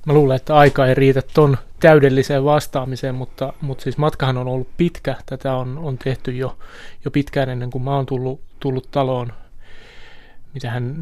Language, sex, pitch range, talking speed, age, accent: Finnish, male, 125-145 Hz, 170 wpm, 20-39, native